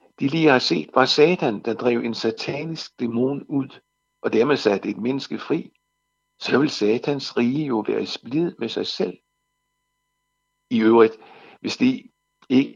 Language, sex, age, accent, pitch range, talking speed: Danish, male, 60-79, native, 125-155 Hz, 160 wpm